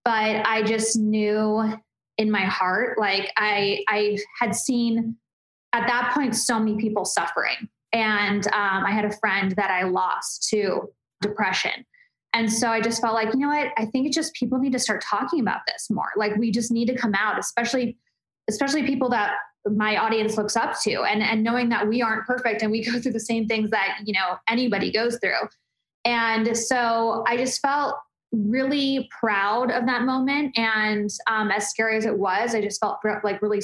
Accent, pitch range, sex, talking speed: American, 210-245 Hz, female, 195 wpm